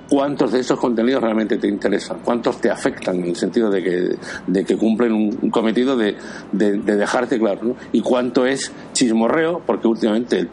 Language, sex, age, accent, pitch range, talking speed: Spanish, male, 60-79, Spanish, 110-125 Hz, 180 wpm